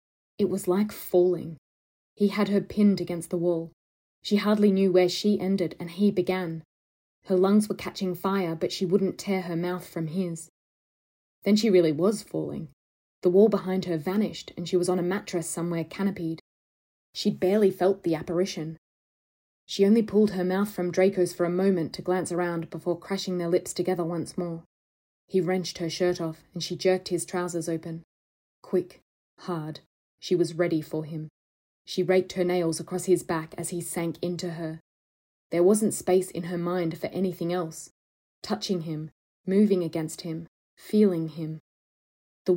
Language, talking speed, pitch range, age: English, 175 wpm, 165-190 Hz, 20-39